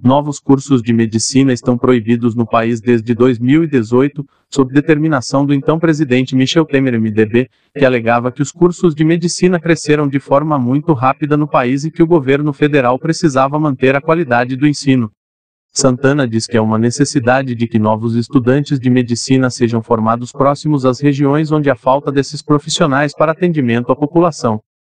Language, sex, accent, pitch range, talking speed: Portuguese, male, Brazilian, 125-150 Hz, 165 wpm